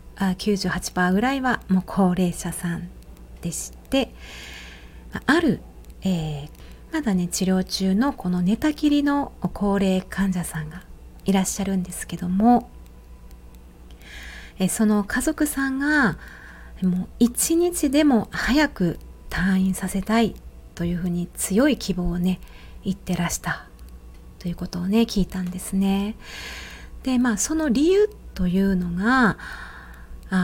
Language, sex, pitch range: Japanese, female, 175-230 Hz